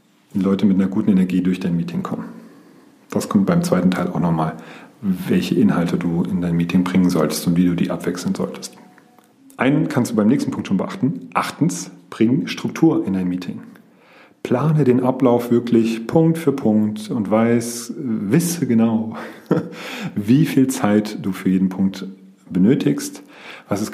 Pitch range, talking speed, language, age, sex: 90-135 Hz, 165 wpm, German, 40-59, male